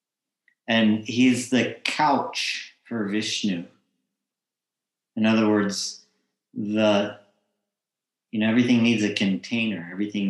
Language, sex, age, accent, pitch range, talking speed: English, male, 50-69, American, 90-110 Hz, 100 wpm